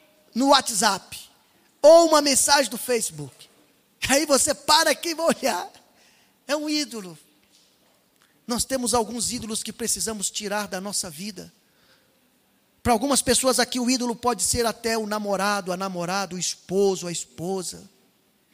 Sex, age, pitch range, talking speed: male, 20-39, 200-285 Hz, 140 wpm